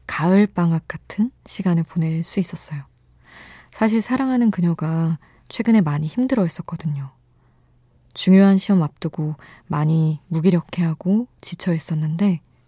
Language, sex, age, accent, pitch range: Korean, female, 20-39, native, 145-180 Hz